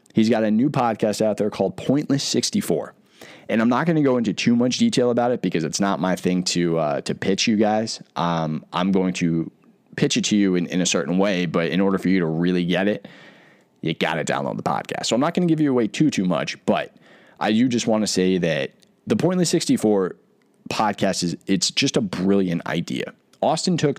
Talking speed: 230 wpm